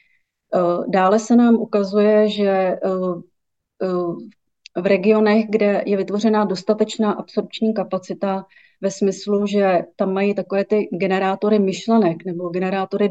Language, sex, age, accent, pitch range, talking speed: Czech, female, 30-49, native, 185-205 Hz, 110 wpm